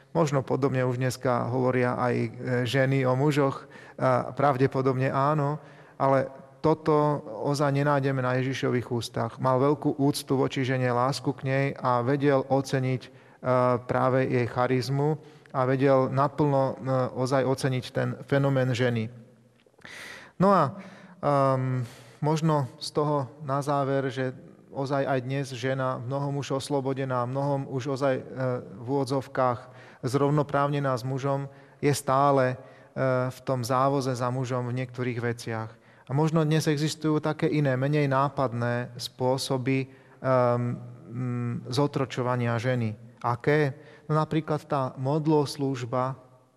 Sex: male